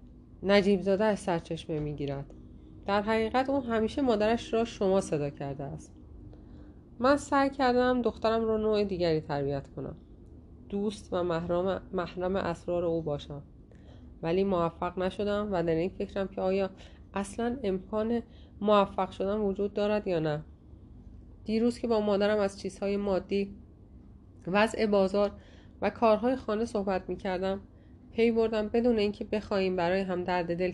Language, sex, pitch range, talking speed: Persian, female, 175-220 Hz, 140 wpm